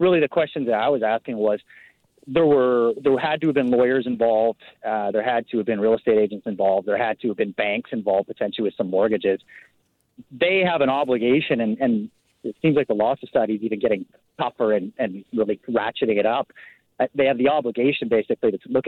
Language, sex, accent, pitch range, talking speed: English, male, American, 115-160 Hz, 215 wpm